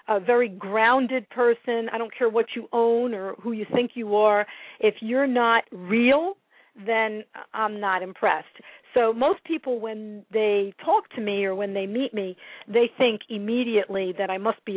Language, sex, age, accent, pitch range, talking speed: English, female, 50-69, American, 190-235 Hz, 180 wpm